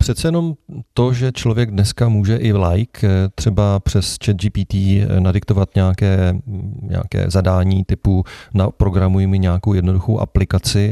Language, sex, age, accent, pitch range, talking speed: Czech, male, 40-59, native, 95-105 Hz, 125 wpm